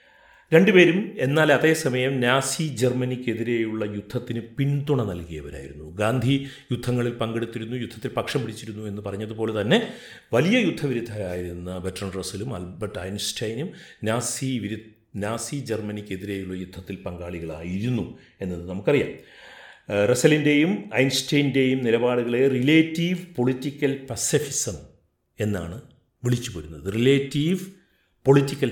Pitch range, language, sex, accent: 100-135 Hz, Malayalam, male, native